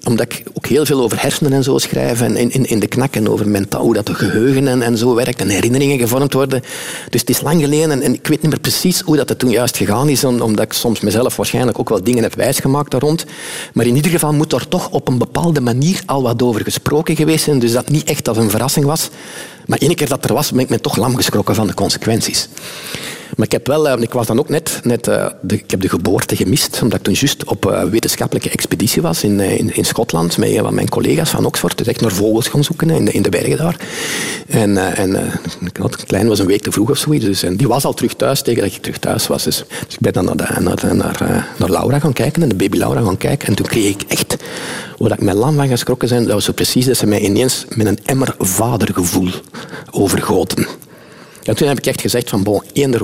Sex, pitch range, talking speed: male, 110-145 Hz, 250 wpm